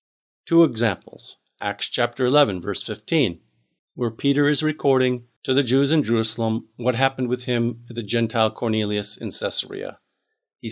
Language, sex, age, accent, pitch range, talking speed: English, male, 50-69, American, 115-150 Hz, 150 wpm